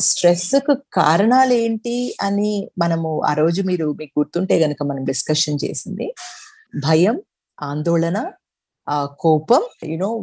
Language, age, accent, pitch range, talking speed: Telugu, 50-69, native, 170-240 Hz, 110 wpm